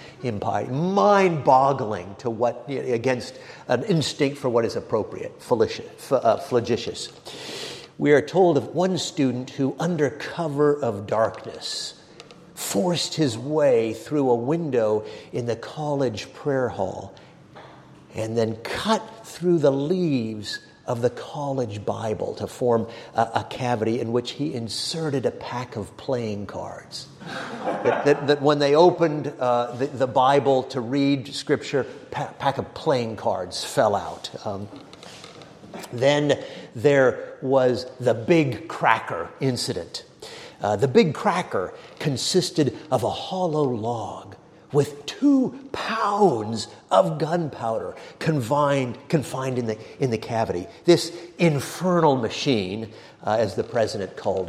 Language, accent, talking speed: English, American, 130 wpm